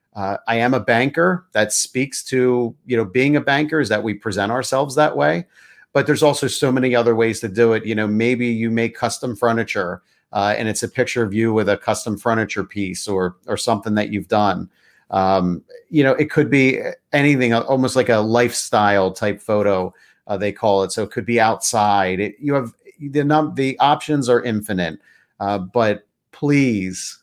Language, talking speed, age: English, 195 wpm, 40-59